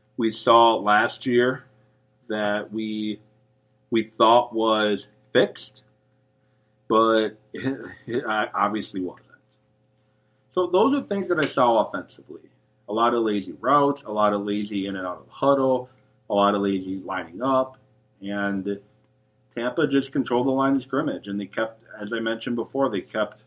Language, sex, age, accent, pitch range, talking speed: English, male, 40-59, American, 105-130 Hz, 155 wpm